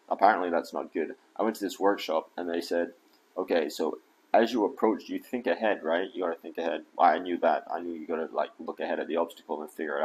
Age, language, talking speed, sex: 30-49, English, 250 wpm, male